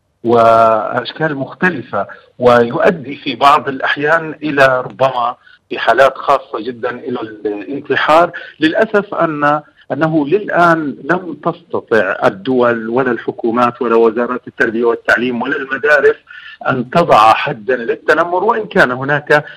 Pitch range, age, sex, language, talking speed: 130-165 Hz, 50-69, male, Arabic, 110 wpm